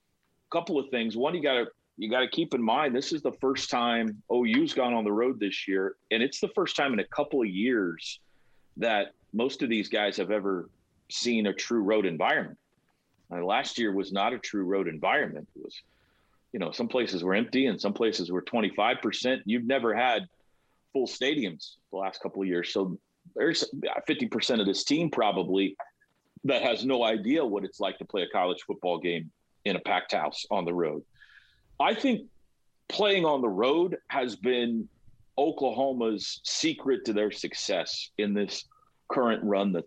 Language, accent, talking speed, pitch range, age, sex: English, American, 185 wpm, 100-140 Hz, 40-59, male